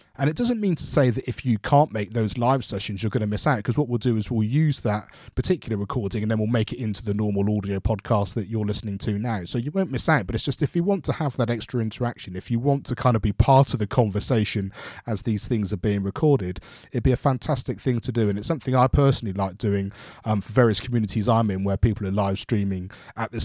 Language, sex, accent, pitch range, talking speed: English, male, British, 105-130 Hz, 265 wpm